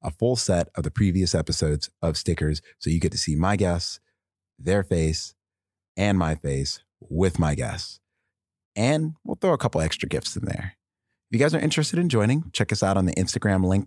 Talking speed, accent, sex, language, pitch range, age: 205 wpm, American, male, English, 80-100 Hz, 30-49